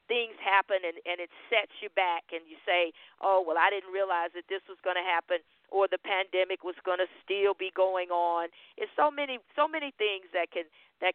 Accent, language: American, English